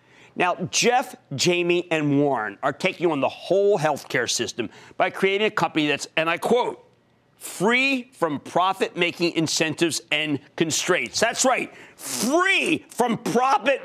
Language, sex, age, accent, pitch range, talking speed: English, male, 40-59, American, 155-240 Hz, 140 wpm